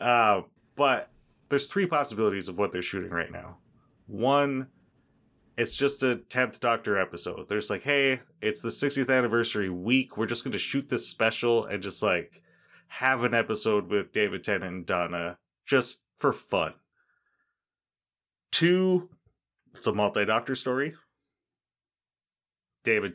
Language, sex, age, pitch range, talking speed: English, male, 30-49, 105-130 Hz, 140 wpm